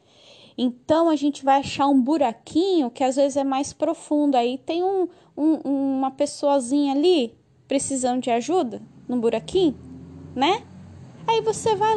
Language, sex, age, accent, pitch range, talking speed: Portuguese, female, 10-29, Brazilian, 225-330 Hz, 145 wpm